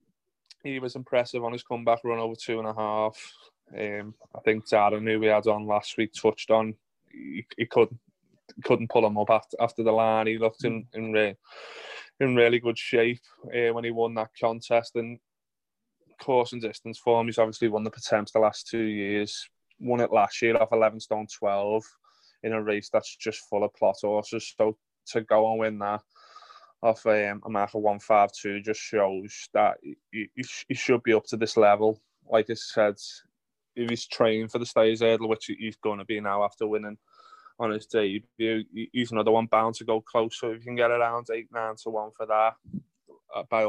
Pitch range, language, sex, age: 110-115 Hz, English, male, 20-39